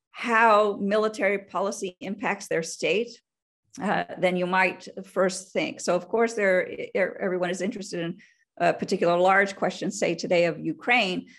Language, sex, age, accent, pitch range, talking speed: English, female, 50-69, American, 175-225 Hz, 140 wpm